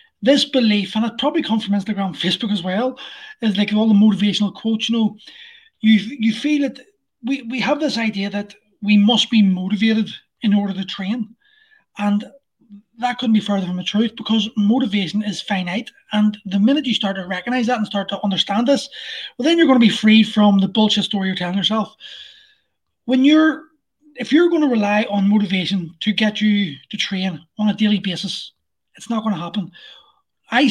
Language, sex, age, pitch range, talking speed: English, male, 20-39, 200-240 Hz, 195 wpm